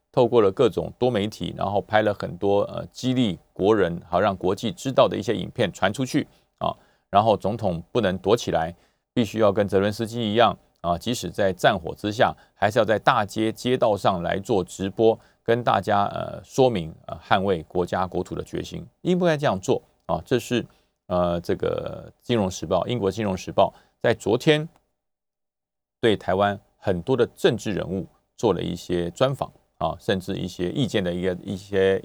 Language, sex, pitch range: Chinese, male, 95-140 Hz